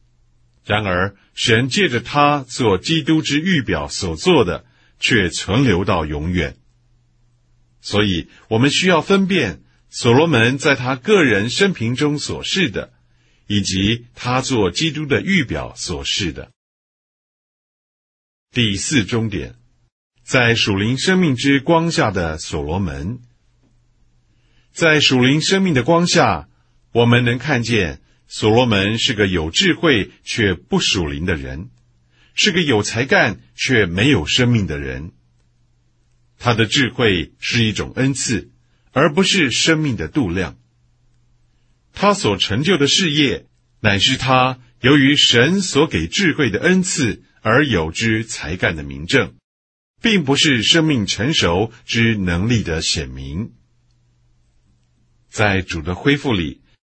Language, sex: English, male